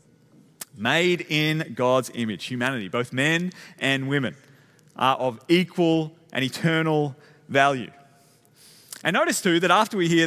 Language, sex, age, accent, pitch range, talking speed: English, male, 30-49, Australian, 140-180 Hz, 130 wpm